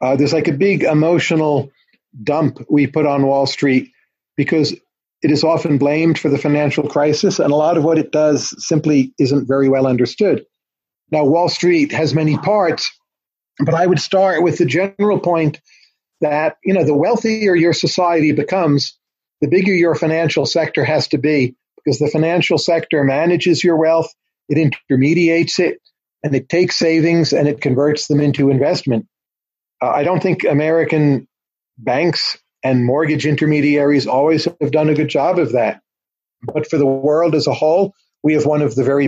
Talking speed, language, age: 170 wpm, English, 40-59